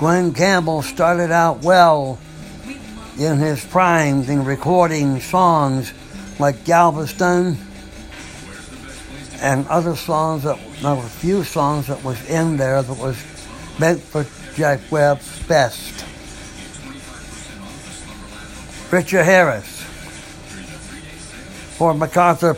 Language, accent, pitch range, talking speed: English, American, 140-170 Hz, 100 wpm